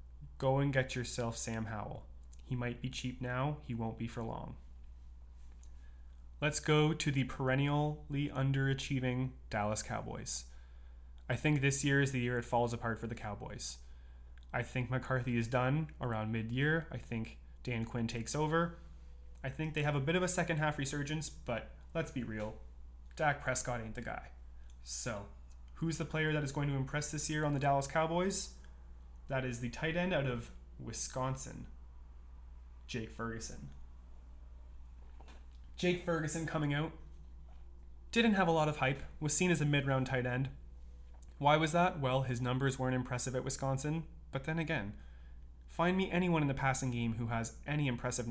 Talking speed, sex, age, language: 170 wpm, male, 20-39, English